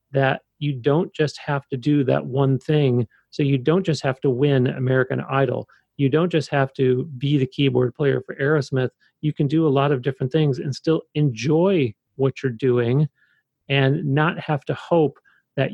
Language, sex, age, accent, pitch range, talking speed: English, male, 40-59, American, 130-150 Hz, 190 wpm